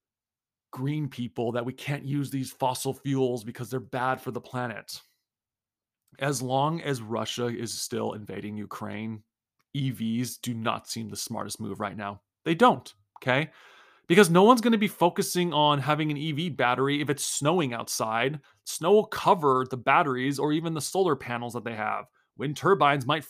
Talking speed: 175 wpm